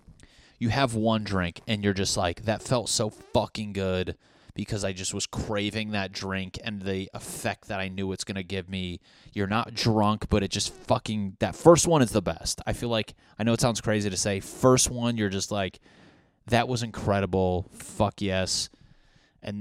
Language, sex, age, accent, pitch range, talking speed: English, male, 20-39, American, 95-115 Hz, 200 wpm